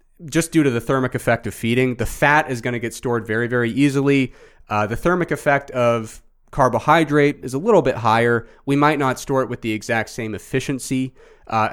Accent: American